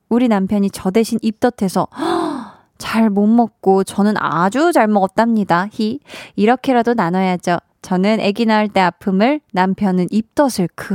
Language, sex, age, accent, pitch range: Korean, female, 20-39, native, 185-245 Hz